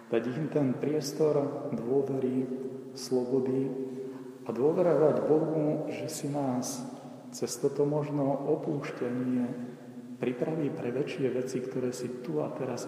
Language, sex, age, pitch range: Slovak, male, 40-59, 125-145 Hz